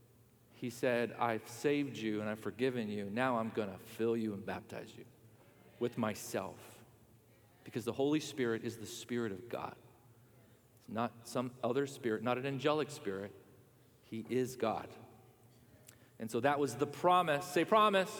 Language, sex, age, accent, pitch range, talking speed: English, male, 40-59, American, 115-155 Hz, 160 wpm